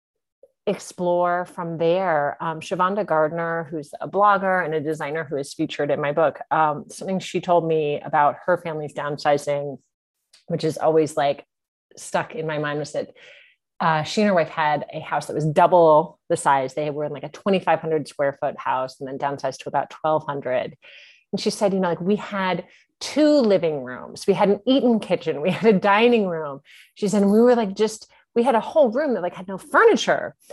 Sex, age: female, 30-49